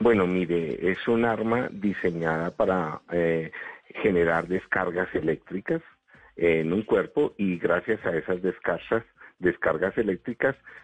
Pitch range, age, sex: 90-115 Hz, 50-69, male